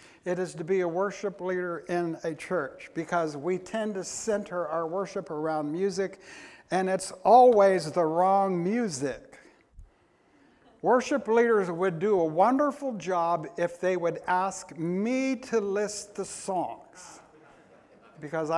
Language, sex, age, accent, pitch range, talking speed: English, male, 60-79, American, 170-215 Hz, 135 wpm